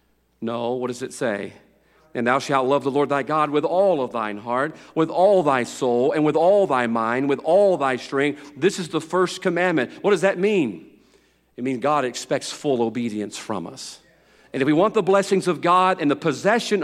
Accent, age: American, 40-59